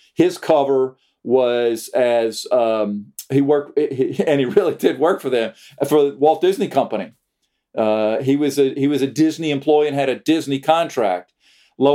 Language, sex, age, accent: English, male, 50-69, American